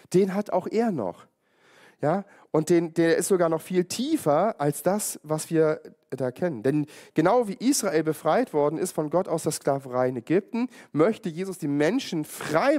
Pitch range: 140-190 Hz